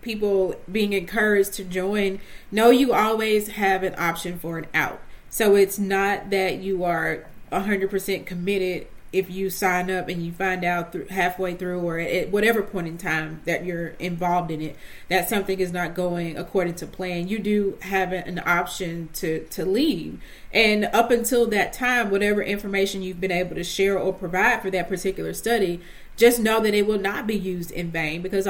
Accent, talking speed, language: American, 185 wpm, English